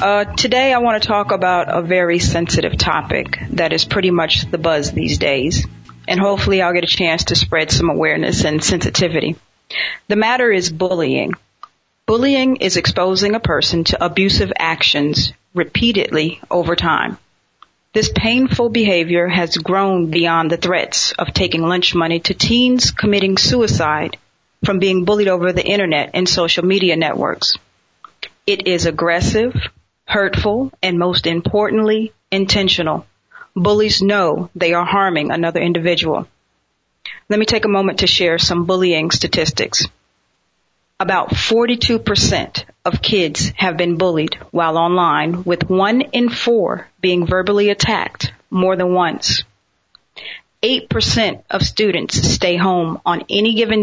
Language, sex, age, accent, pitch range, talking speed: English, female, 40-59, American, 170-205 Hz, 140 wpm